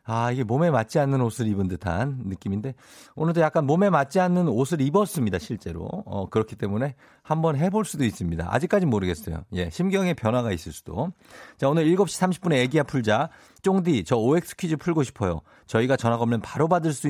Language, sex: Korean, male